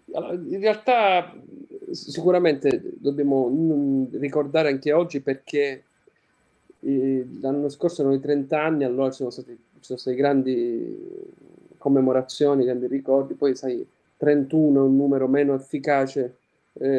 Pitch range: 130-145 Hz